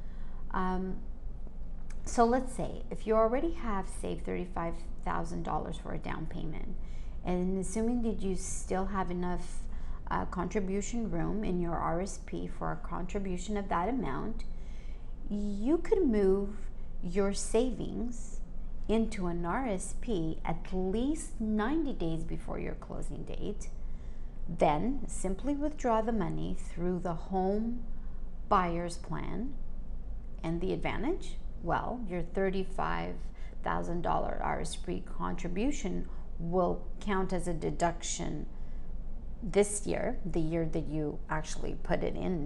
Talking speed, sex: 115 wpm, female